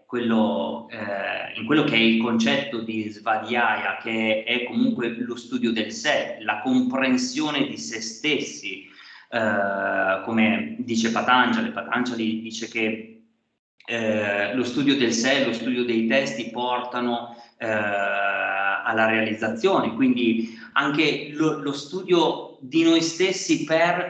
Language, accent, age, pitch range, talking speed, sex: Italian, native, 30-49, 110-145 Hz, 130 wpm, male